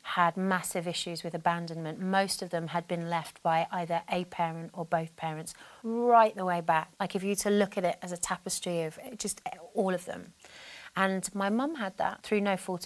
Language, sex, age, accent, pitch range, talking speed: English, female, 30-49, British, 165-185 Hz, 215 wpm